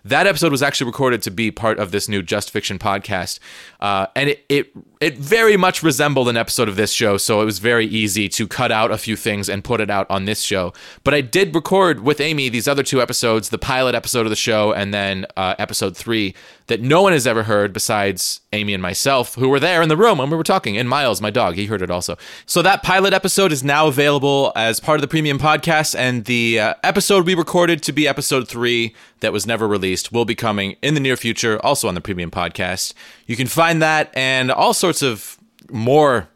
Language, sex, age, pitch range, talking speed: English, male, 30-49, 105-150 Hz, 235 wpm